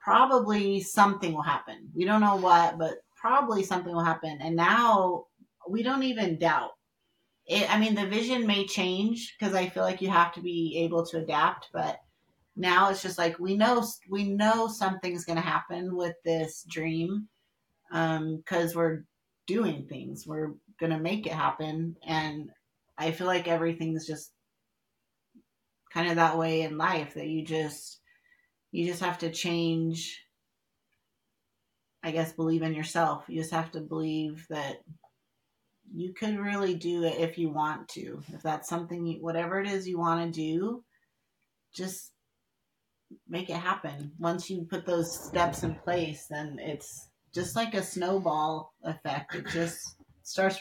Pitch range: 160-195 Hz